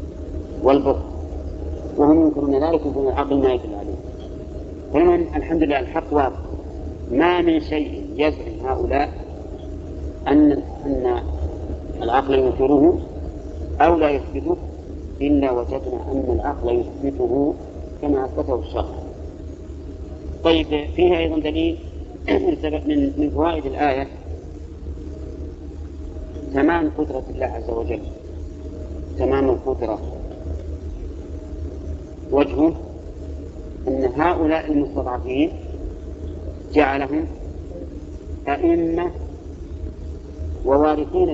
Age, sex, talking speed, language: 50-69, male, 80 wpm, Arabic